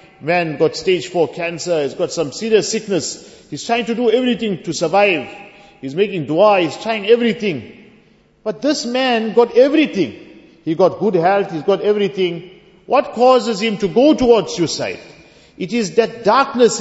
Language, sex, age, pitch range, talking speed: English, male, 50-69, 180-240 Hz, 165 wpm